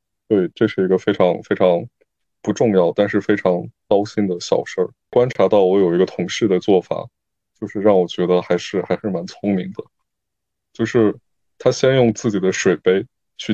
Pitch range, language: 90-105 Hz, Chinese